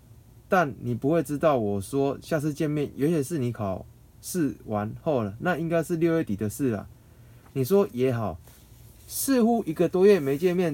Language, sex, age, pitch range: Chinese, male, 20-39, 115-165 Hz